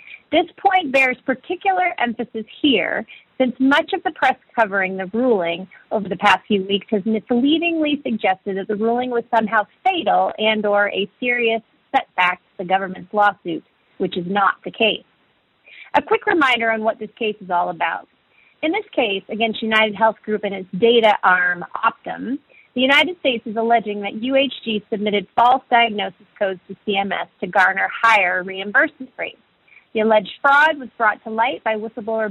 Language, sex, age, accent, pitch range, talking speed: English, female, 30-49, American, 195-250 Hz, 170 wpm